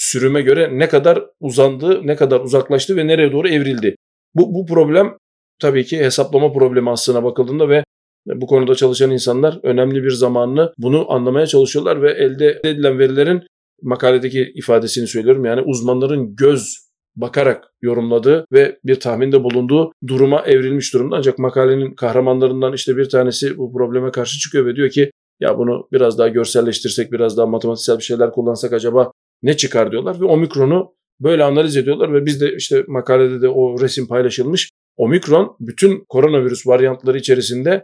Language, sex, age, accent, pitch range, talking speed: Turkish, male, 40-59, native, 125-155 Hz, 155 wpm